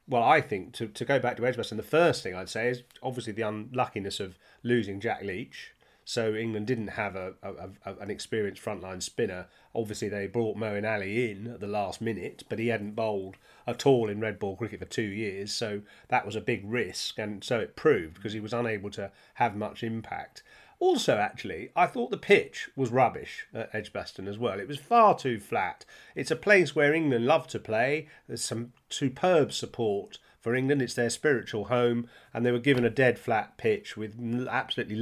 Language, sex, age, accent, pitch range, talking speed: English, male, 30-49, British, 105-125 Hz, 205 wpm